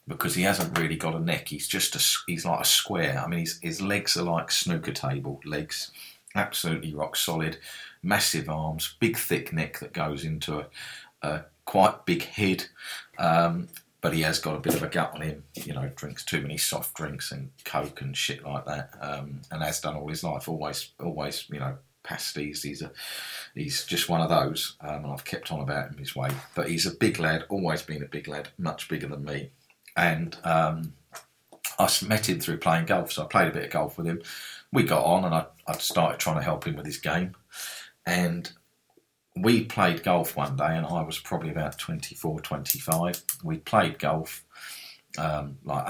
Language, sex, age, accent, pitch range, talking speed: English, male, 40-59, British, 75-85 Hz, 205 wpm